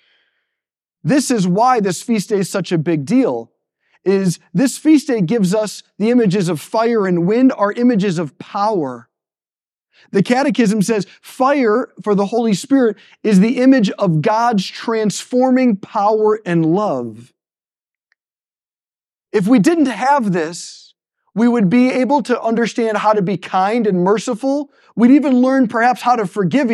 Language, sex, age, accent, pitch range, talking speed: English, male, 40-59, American, 180-240 Hz, 155 wpm